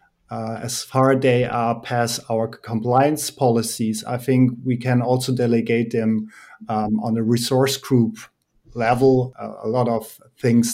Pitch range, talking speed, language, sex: 115-130 Hz, 155 wpm, English, male